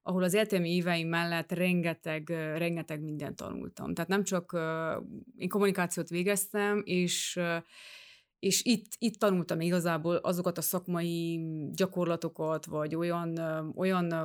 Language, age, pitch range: Hungarian, 30-49, 165-195 Hz